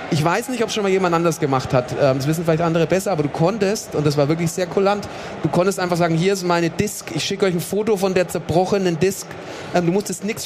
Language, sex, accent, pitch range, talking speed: German, male, German, 150-180 Hz, 260 wpm